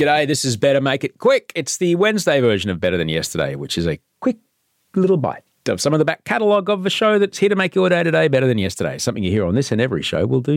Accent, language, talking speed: Australian, English, 285 wpm